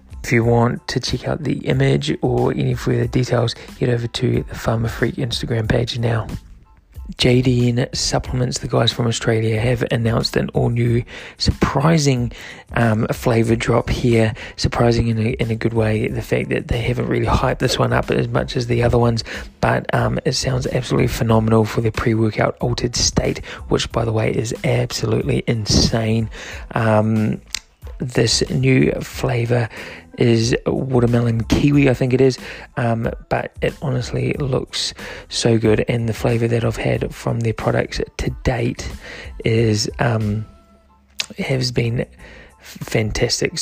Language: English